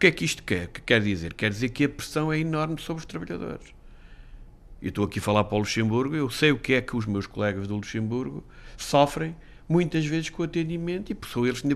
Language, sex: Portuguese, male